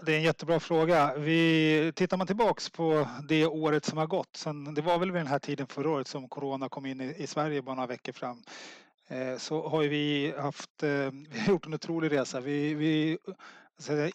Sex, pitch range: male, 140-155 Hz